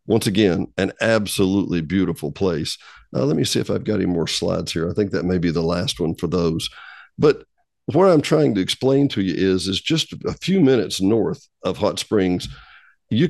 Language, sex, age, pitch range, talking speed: English, male, 50-69, 90-120 Hz, 210 wpm